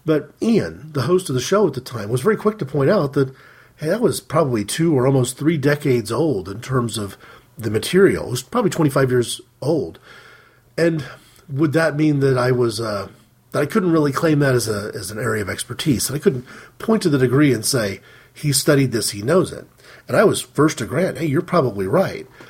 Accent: American